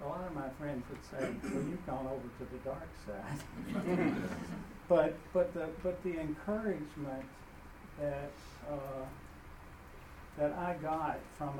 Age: 60-79